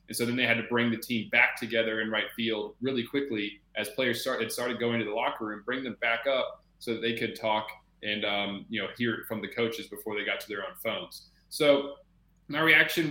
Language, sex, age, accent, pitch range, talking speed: English, male, 20-39, American, 110-135 Hz, 245 wpm